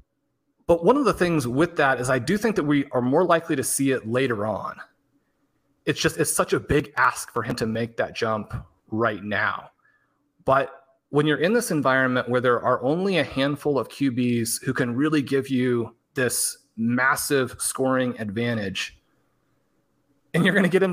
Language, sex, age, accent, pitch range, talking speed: English, male, 30-49, American, 125-155 Hz, 185 wpm